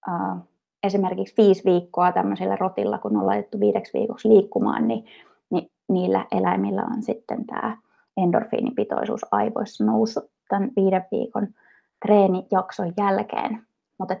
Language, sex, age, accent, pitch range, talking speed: Finnish, female, 20-39, native, 180-230 Hz, 120 wpm